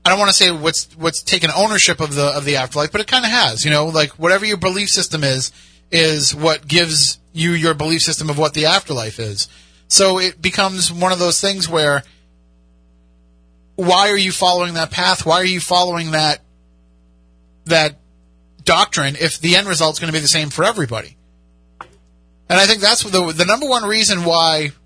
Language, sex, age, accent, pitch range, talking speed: English, male, 30-49, American, 145-180 Hz, 200 wpm